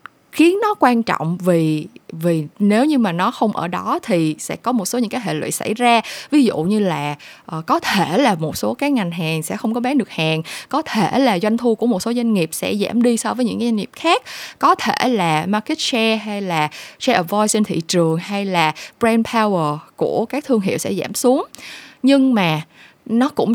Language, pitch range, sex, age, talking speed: Vietnamese, 180-245 Hz, female, 20-39, 230 wpm